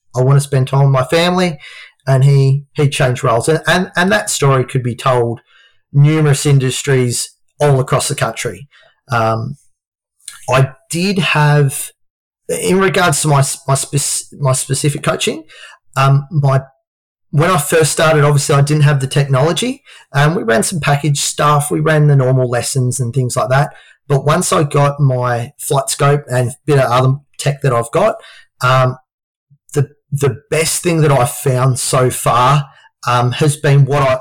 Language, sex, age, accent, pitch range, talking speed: English, male, 30-49, Australian, 130-150 Hz, 170 wpm